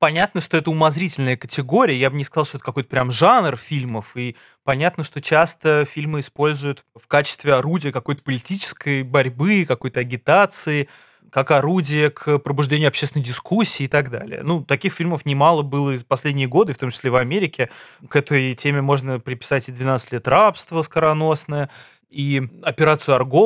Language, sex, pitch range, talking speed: Russian, male, 135-160 Hz, 165 wpm